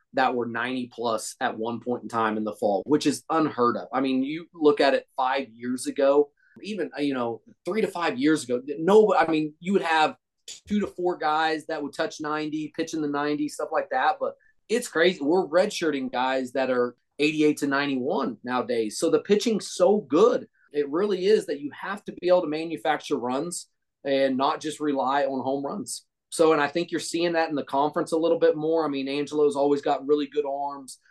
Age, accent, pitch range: 30-49, American, 135-170 Hz